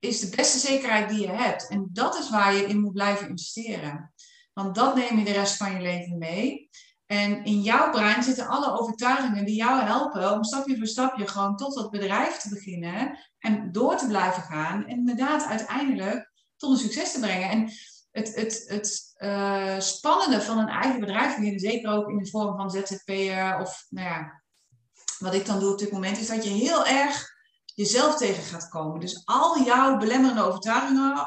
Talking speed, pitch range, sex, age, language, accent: 185 wpm, 195-245 Hz, female, 30-49, Dutch, Dutch